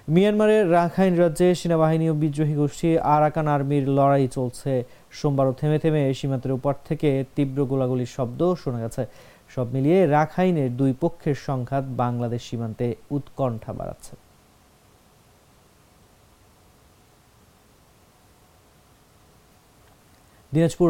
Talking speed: 90 wpm